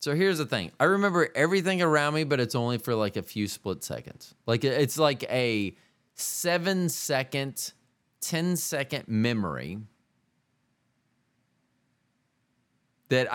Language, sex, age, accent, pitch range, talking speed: English, male, 30-49, American, 105-150 Hz, 125 wpm